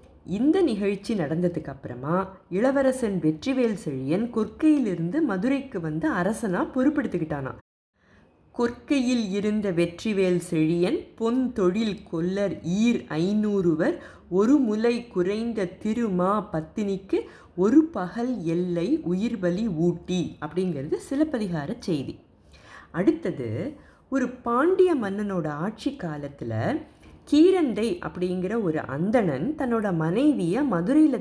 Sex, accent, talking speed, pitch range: female, native, 90 wpm, 170-250 Hz